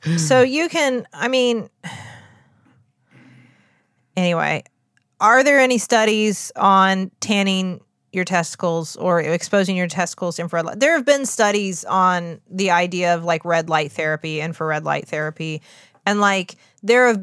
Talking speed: 140 wpm